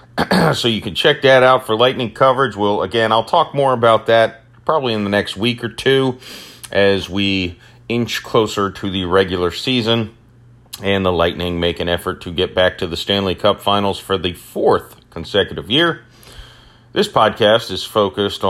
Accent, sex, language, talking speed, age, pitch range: American, male, English, 175 wpm, 40-59, 95-120 Hz